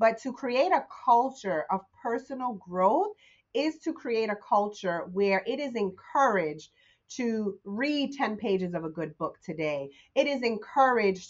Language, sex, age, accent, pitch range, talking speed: English, female, 30-49, American, 185-235 Hz, 155 wpm